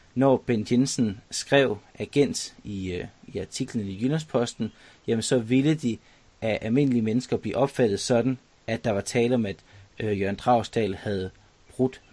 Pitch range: 105-135 Hz